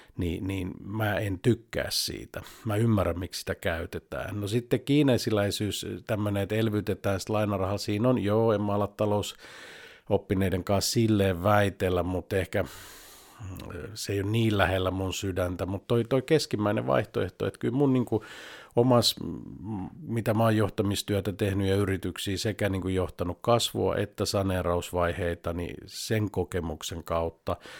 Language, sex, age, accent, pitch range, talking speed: Finnish, male, 50-69, native, 90-110 Hz, 140 wpm